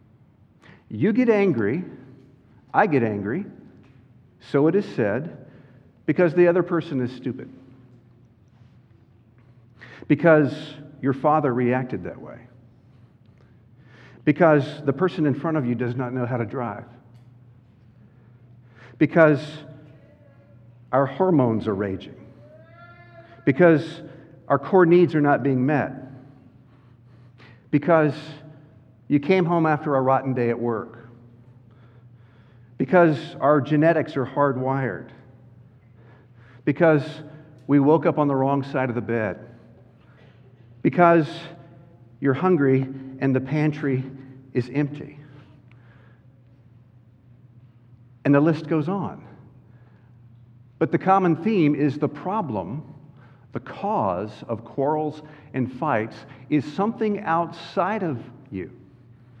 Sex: male